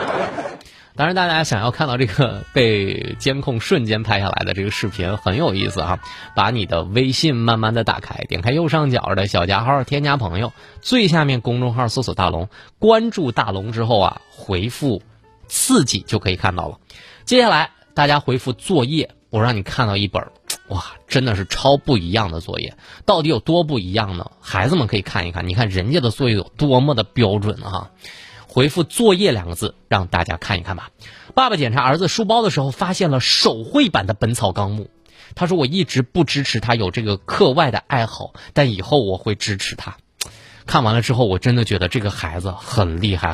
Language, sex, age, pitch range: Chinese, male, 20-39, 100-140 Hz